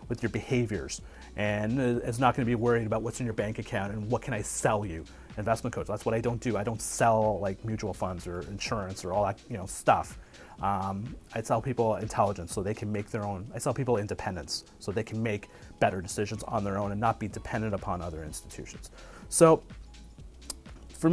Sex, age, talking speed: male, 30-49, 215 wpm